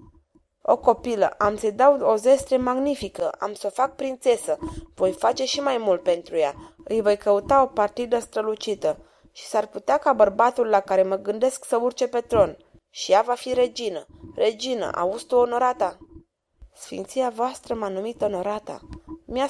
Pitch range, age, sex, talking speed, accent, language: 205-260 Hz, 20-39, female, 165 wpm, native, Romanian